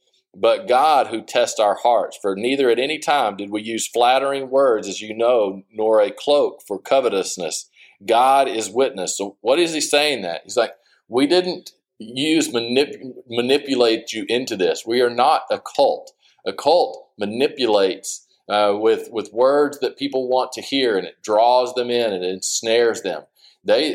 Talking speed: 175 wpm